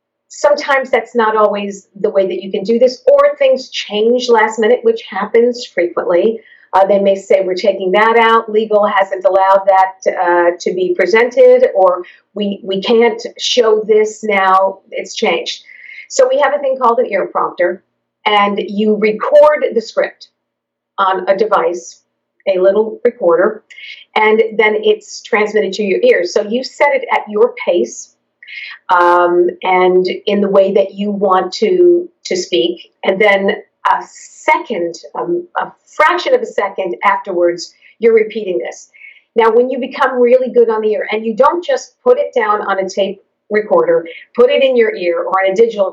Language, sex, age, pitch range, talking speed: English, female, 50-69, 195-315 Hz, 170 wpm